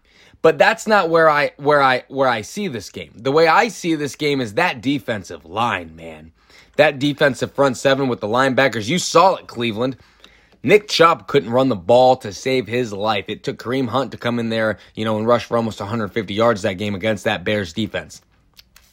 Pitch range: 115-150 Hz